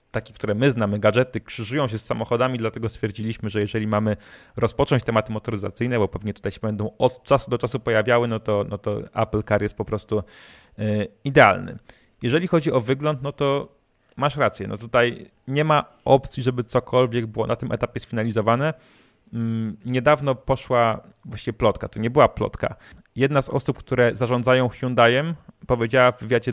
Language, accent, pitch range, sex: Polish, native, 110-130 Hz, male